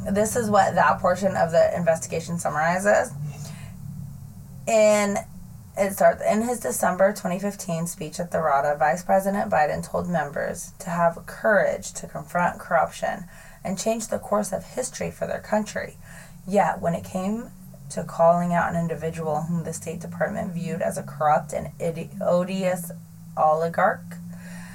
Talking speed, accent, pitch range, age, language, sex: 145 wpm, American, 155-185 Hz, 20-39, English, female